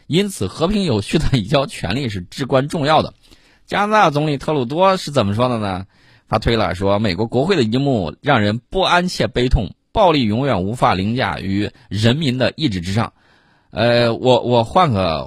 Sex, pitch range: male, 100-140 Hz